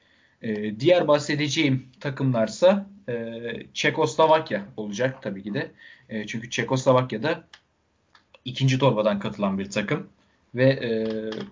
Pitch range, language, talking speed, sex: 115-155 Hz, Turkish, 90 wpm, male